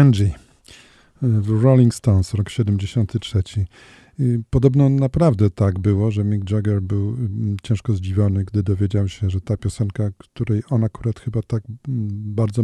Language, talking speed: Polish, 135 wpm